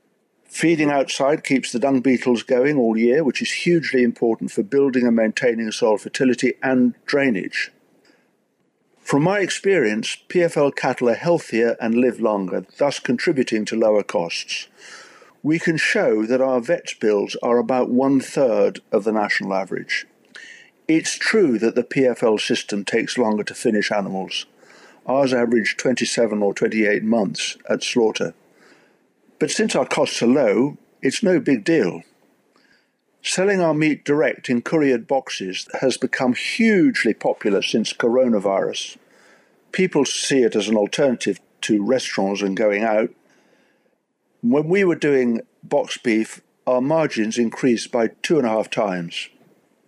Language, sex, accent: English, male, British